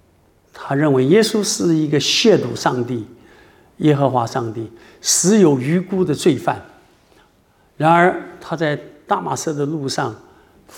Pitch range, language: 135-215 Hz, Chinese